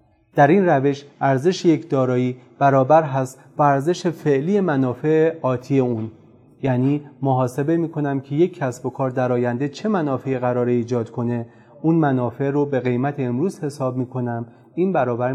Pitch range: 120-150 Hz